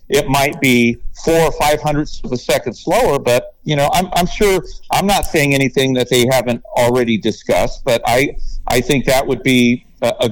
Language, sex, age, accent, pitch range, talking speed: English, male, 50-69, American, 105-140 Hz, 205 wpm